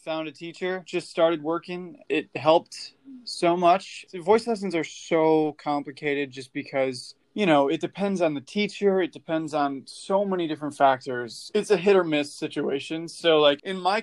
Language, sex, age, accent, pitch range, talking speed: English, male, 20-39, American, 145-175 Hz, 180 wpm